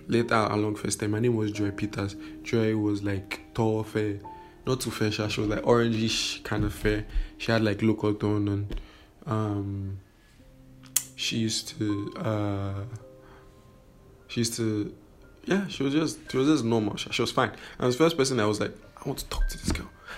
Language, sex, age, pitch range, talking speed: English, male, 20-39, 105-130 Hz, 195 wpm